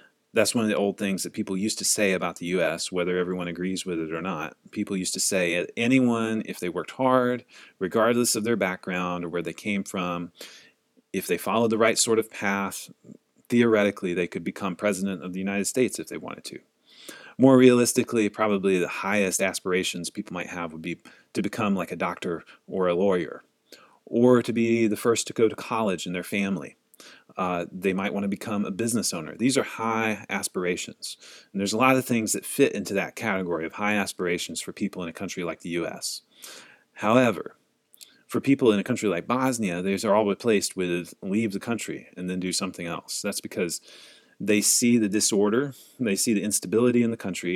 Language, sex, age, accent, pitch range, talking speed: English, male, 30-49, American, 90-115 Hz, 205 wpm